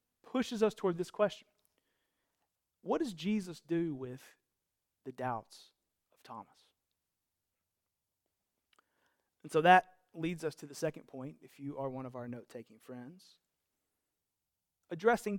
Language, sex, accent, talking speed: English, male, American, 125 wpm